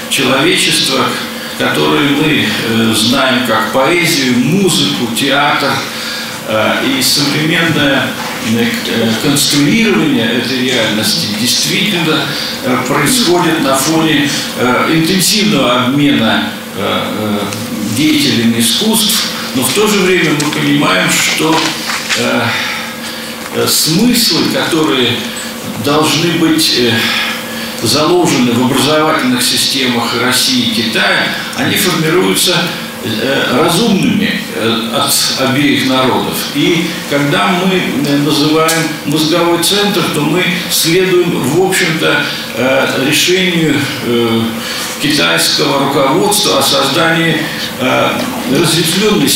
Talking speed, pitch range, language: 90 wpm, 130-180 Hz, Russian